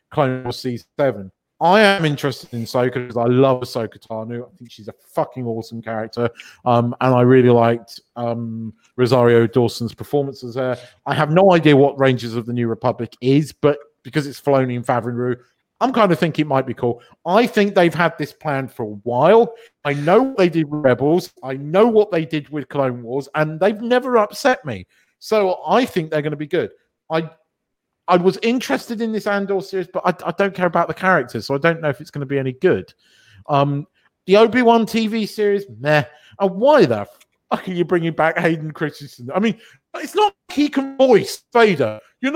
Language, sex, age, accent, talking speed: English, male, 40-59, British, 205 wpm